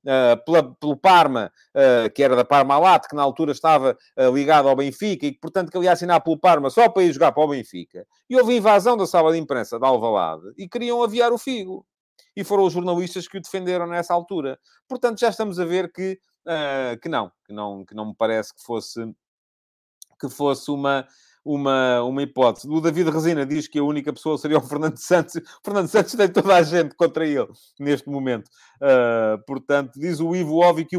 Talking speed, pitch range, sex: 210 wpm, 125-185 Hz, male